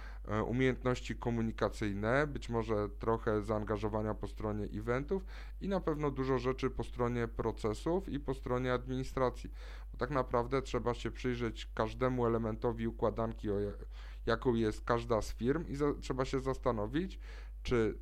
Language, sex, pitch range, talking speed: Polish, male, 105-125 Hz, 145 wpm